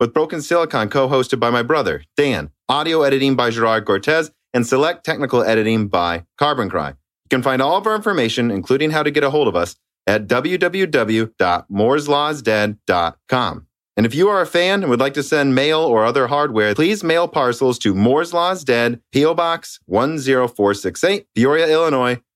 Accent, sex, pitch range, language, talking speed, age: American, male, 110-155 Hz, English, 170 wpm, 30-49